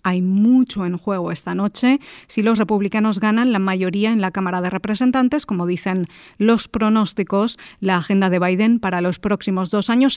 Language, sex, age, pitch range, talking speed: Spanish, female, 40-59, 190-230 Hz, 175 wpm